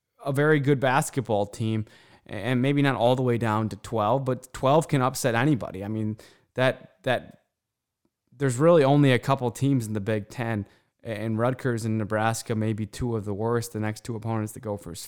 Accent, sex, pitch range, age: American, male, 110-130 Hz, 20-39